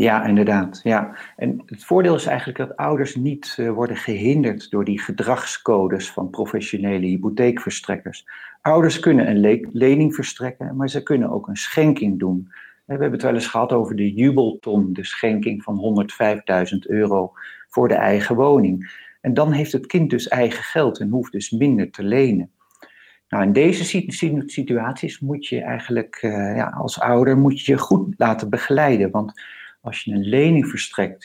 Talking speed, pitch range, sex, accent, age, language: 155 wpm, 100-140 Hz, male, Dutch, 50-69, Dutch